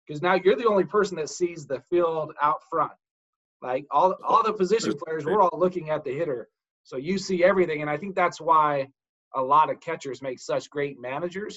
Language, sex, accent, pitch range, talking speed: English, male, American, 140-180 Hz, 215 wpm